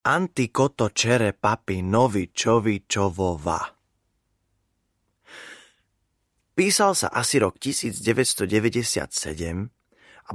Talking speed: 60 wpm